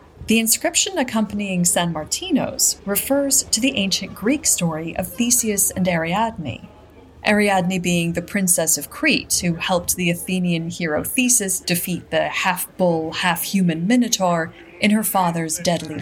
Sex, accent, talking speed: female, American, 135 wpm